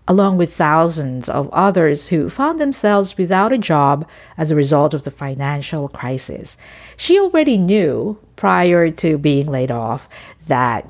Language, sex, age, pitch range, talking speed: English, female, 50-69, 145-225 Hz, 150 wpm